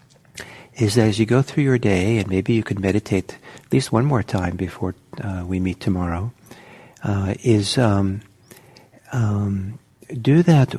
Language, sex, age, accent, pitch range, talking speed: English, male, 60-79, American, 100-130 Hz, 160 wpm